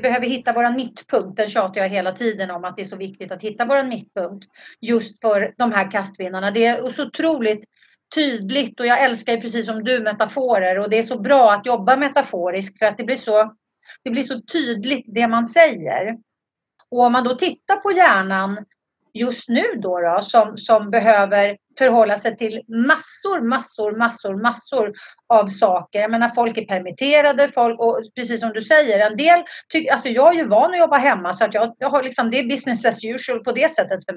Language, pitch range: Swedish, 200-255 Hz